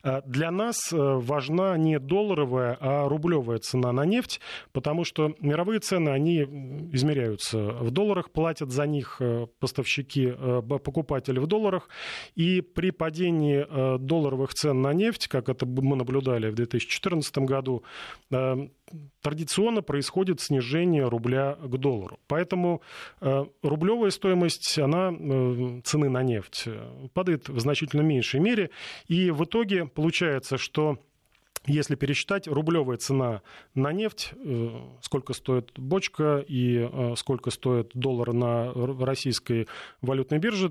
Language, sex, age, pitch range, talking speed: Russian, male, 30-49, 130-165 Hz, 115 wpm